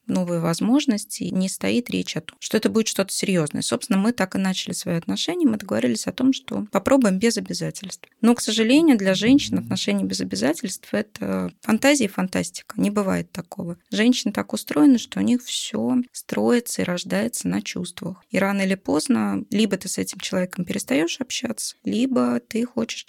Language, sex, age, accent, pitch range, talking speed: Russian, female, 20-39, native, 180-240 Hz, 175 wpm